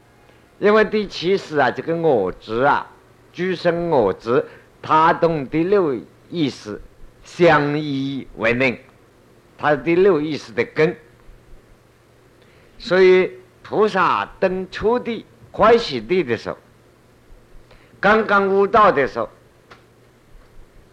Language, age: Chinese, 50-69